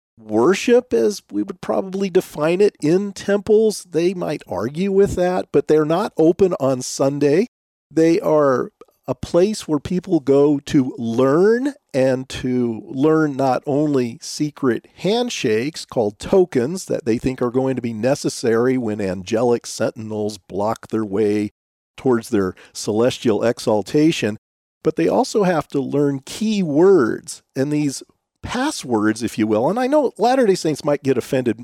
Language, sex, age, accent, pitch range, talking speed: English, male, 40-59, American, 115-195 Hz, 150 wpm